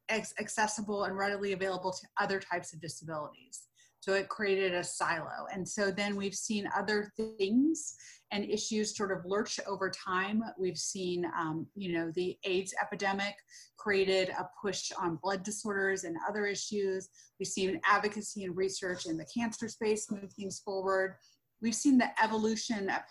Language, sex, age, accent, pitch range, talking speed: English, female, 30-49, American, 190-230 Hz, 160 wpm